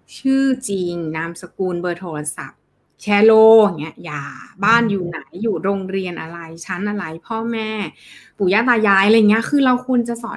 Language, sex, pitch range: Thai, female, 175-230 Hz